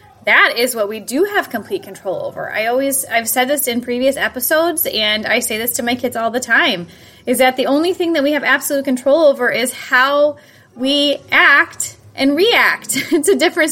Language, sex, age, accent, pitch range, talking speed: English, female, 20-39, American, 205-280 Hz, 200 wpm